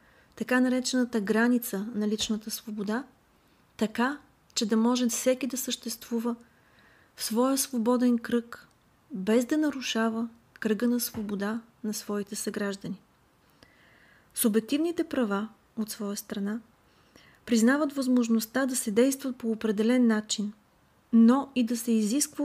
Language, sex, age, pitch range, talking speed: Bulgarian, female, 30-49, 215-255 Hz, 120 wpm